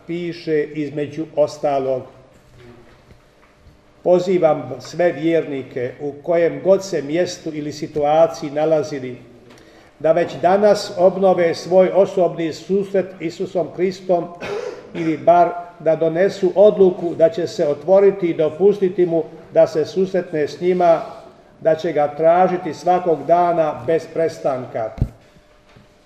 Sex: male